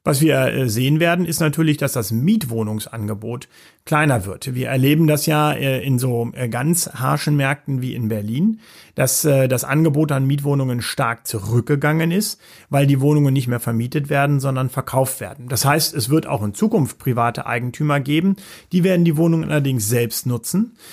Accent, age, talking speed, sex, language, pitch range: German, 40-59, 165 wpm, male, German, 125-165 Hz